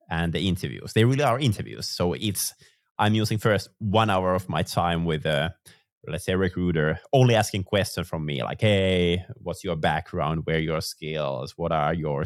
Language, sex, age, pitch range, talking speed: English, male, 20-39, 85-105 Hz, 185 wpm